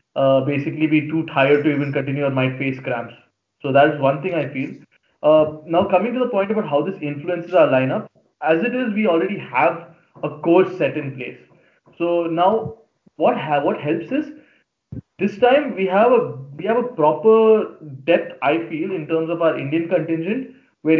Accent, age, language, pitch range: Indian, 20-39, English, 145-180 Hz